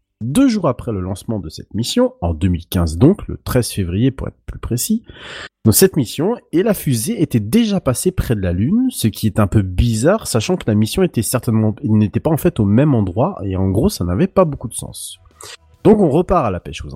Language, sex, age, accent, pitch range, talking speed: French, male, 30-49, French, 100-165 Hz, 235 wpm